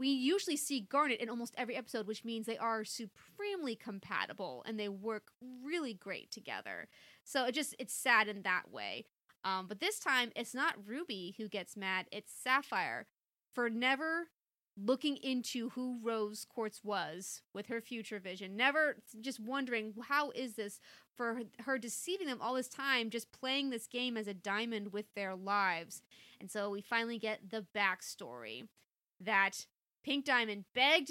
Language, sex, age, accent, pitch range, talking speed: English, female, 20-39, American, 215-265 Hz, 165 wpm